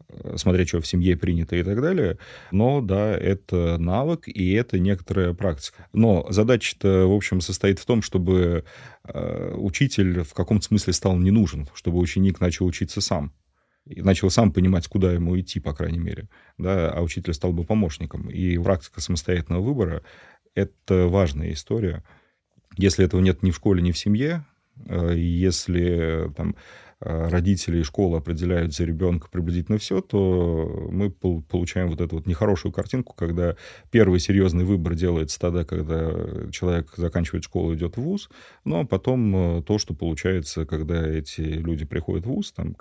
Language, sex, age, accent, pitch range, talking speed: Russian, male, 30-49, native, 85-100 Hz, 160 wpm